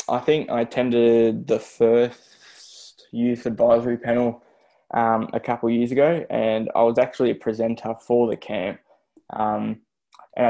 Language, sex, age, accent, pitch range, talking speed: English, male, 10-29, Australian, 110-120 Hz, 150 wpm